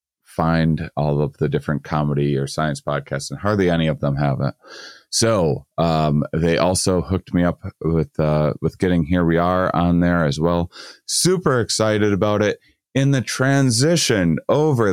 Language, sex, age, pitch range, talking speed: English, male, 30-49, 75-90 Hz, 170 wpm